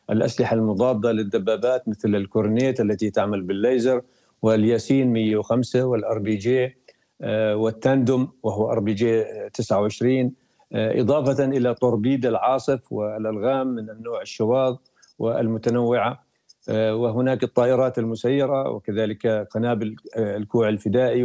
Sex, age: male, 50-69